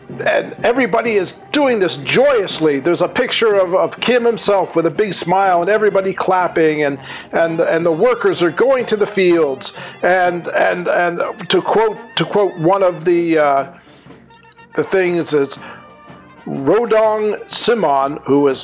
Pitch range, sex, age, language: 165-235 Hz, male, 50-69, English